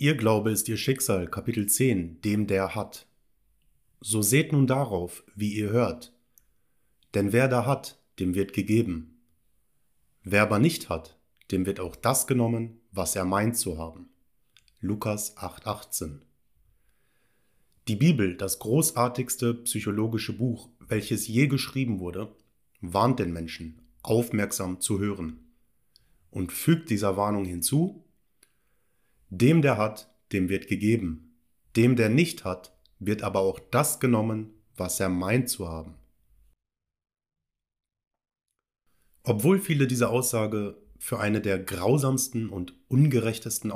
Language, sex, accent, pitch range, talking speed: German, male, German, 95-120 Hz, 125 wpm